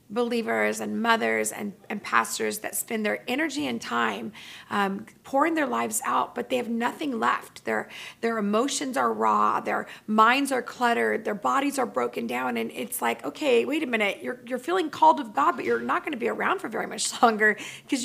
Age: 30-49